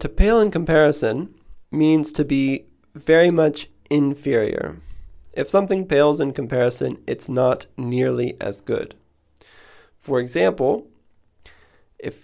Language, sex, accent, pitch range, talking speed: English, male, American, 130-160 Hz, 115 wpm